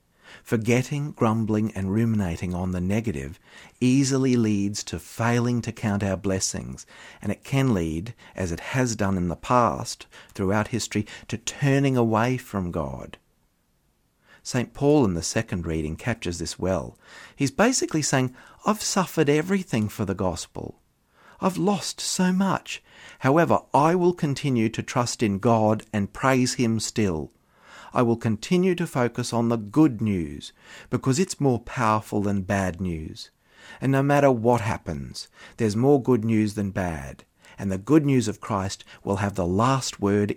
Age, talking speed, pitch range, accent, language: 50-69, 155 wpm, 95-125 Hz, Australian, English